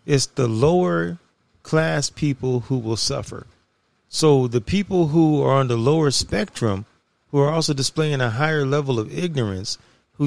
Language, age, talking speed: English, 40-59, 160 wpm